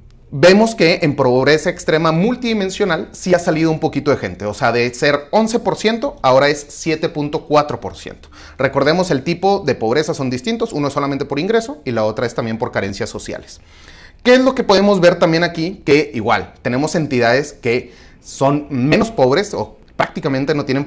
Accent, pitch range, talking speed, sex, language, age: Mexican, 130-180 Hz, 175 wpm, male, Spanish, 30-49